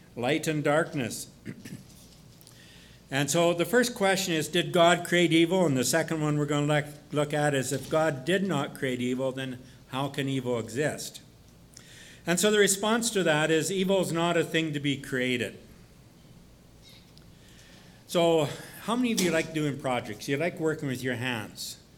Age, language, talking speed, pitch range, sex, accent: 60-79, English, 170 wpm, 135-180 Hz, male, American